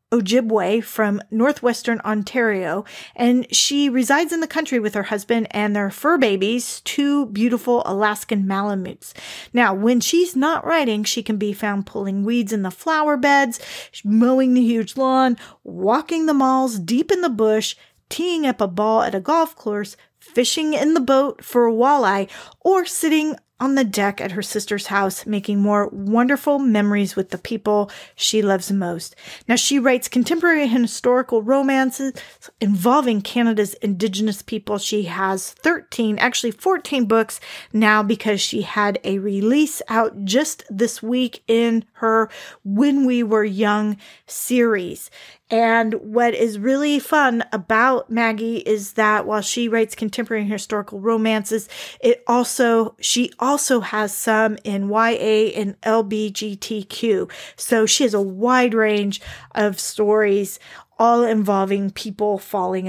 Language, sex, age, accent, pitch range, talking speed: English, female, 40-59, American, 210-255 Hz, 145 wpm